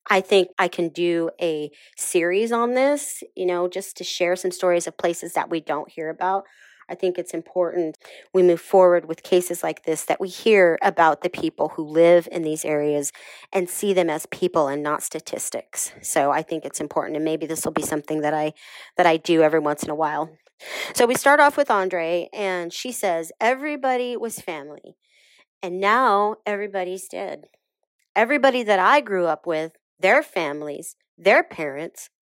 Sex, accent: female, American